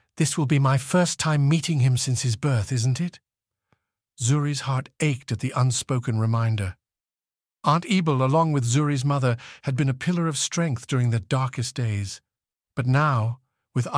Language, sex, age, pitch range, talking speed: English, male, 50-69, 115-145 Hz, 170 wpm